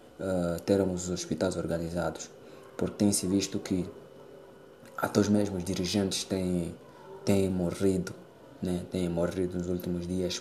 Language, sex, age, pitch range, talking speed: Portuguese, male, 20-39, 90-95 Hz, 120 wpm